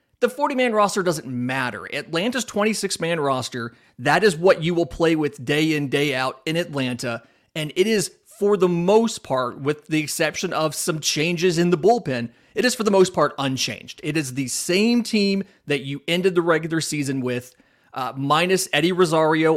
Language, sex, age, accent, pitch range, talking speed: English, male, 30-49, American, 130-175 Hz, 185 wpm